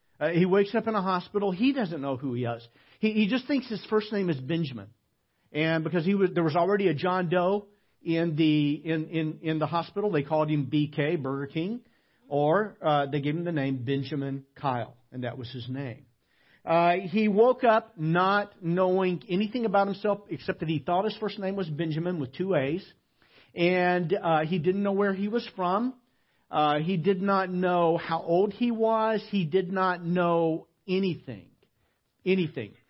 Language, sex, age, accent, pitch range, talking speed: English, male, 50-69, American, 150-195 Hz, 190 wpm